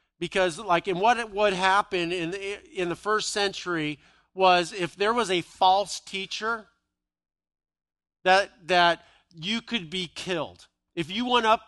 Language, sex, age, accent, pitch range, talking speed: English, male, 50-69, American, 165-200 Hz, 155 wpm